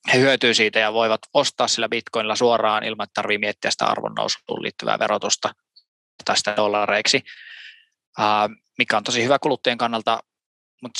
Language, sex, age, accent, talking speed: Finnish, male, 20-39, native, 135 wpm